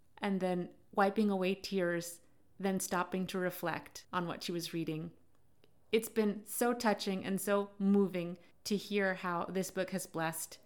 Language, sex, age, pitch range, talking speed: English, female, 30-49, 175-210 Hz, 160 wpm